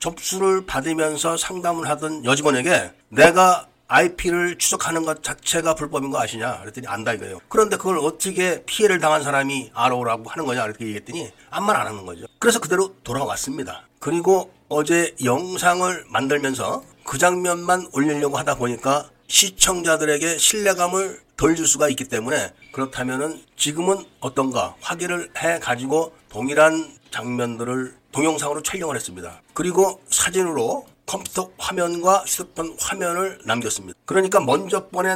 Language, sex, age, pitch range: Korean, male, 40-59, 140-180 Hz